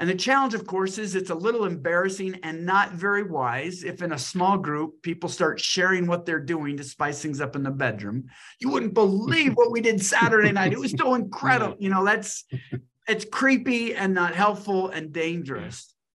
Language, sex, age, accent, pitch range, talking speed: English, male, 50-69, American, 160-200 Hz, 200 wpm